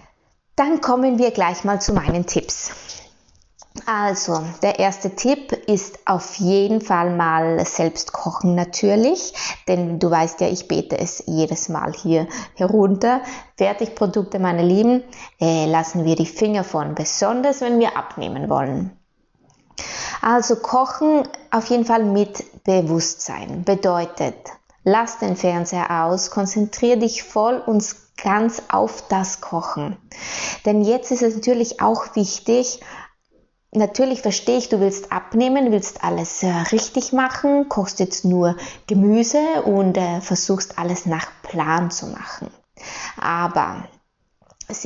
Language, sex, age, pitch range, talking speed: German, female, 20-39, 180-230 Hz, 130 wpm